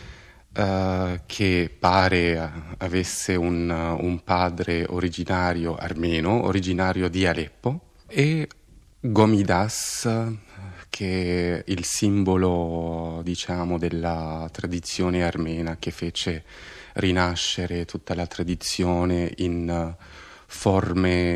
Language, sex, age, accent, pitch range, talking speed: Italian, male, 30-49, native, 85-95 Hz, 80 wpm